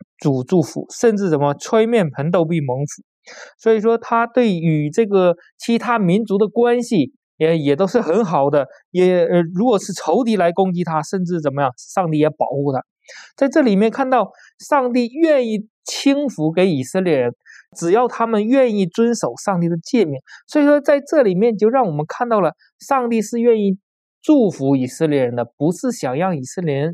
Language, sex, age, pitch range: Chinese, male, 20-39, 165-245 Hz